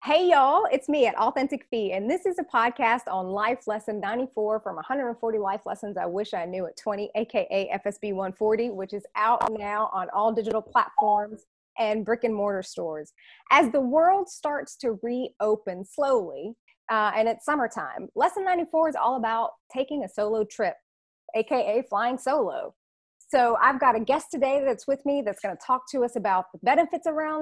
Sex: female